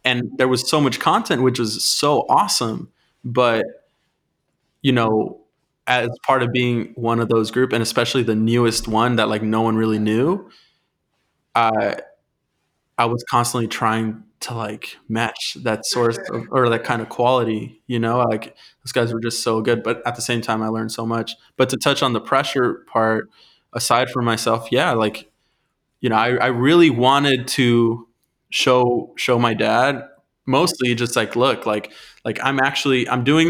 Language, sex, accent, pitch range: English, male, American, 115-125 Hz